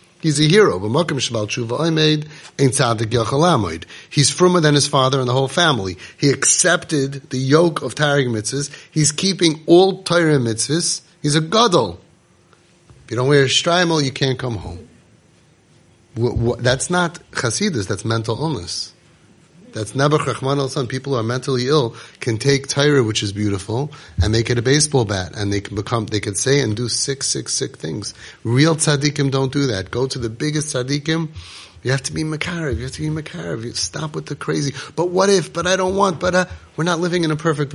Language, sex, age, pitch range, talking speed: English, male, 30-49, 115-155 Hz, 185 wpm